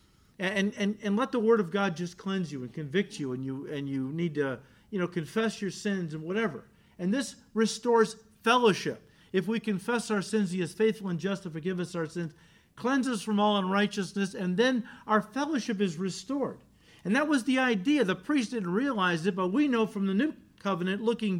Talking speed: 210 wpm